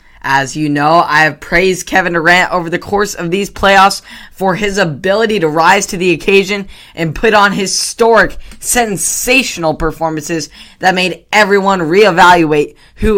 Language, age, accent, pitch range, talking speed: English, 10-29, American, 145-185 Hz, 150 wpm